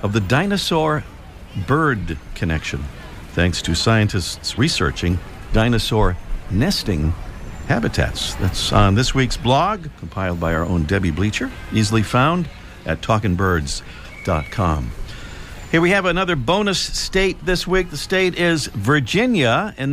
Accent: American